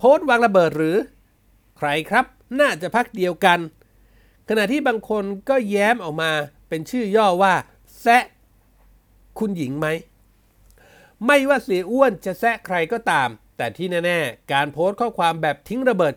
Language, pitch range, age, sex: Thai, 145-215 Hz, 60-79, male